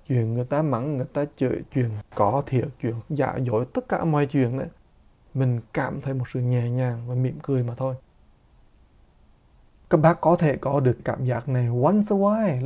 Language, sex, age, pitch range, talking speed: English, male, 20-39, 125-150 Hz, 200 wpm